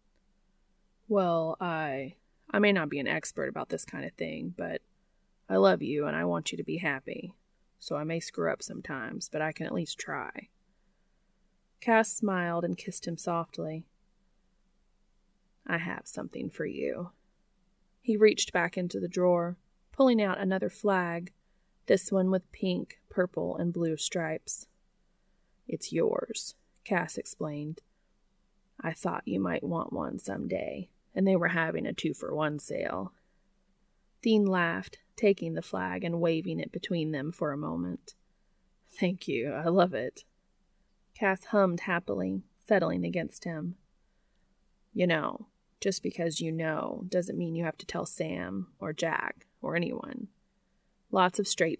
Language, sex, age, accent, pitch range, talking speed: English, female, 20-39, American, 165-195 Hz, 145 wpm